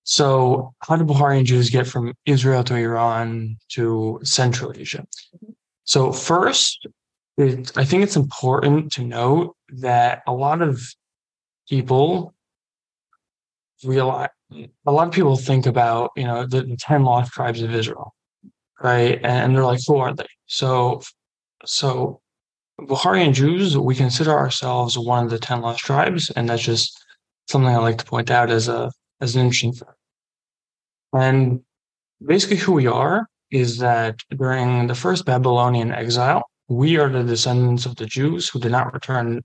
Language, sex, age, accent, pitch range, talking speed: English, male, 20-39, American, 120-140 Hz, 150 wpm